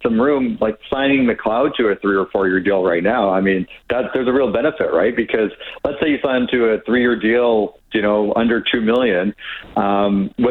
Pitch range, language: 105-125 Hz, English